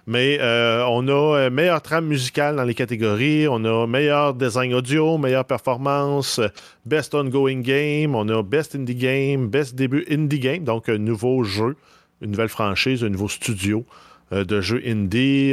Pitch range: 105-140 Hz